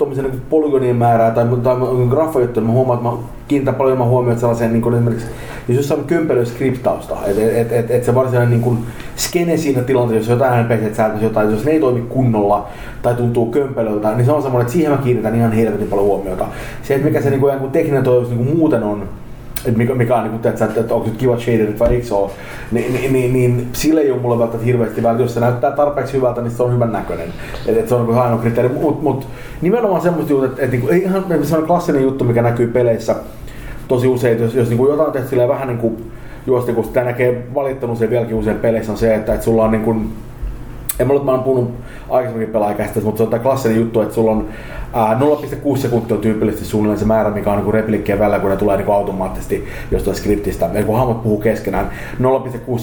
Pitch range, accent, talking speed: 110-130 Hz, native, 205 wpm